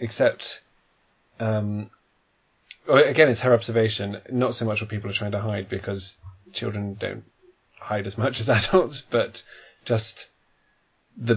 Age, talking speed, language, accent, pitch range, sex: 20-39, 135 wpm, English, British, 105-120 Hz, male